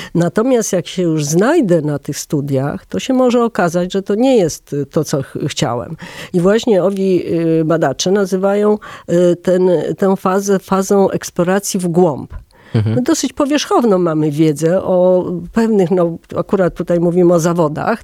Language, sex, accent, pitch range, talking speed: Polish, female, native, 160-195 Hz, 145 wpm